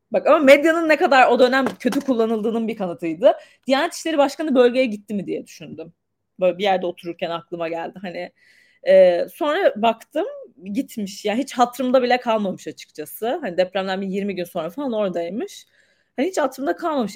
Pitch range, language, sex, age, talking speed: 185-265 Hz, Turkish, female, 30-49, 170 wpm